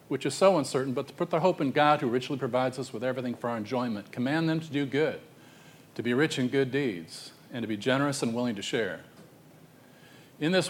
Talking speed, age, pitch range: 230 wpm, 40-59, 120-155 Hz